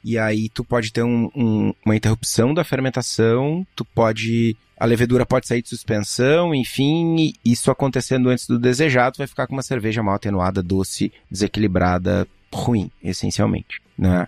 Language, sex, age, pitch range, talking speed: Portuguese, male, 20-39, 100-125 Hz, 160 wpm